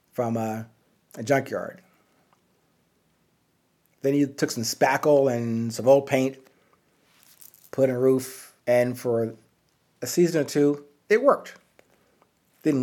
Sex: male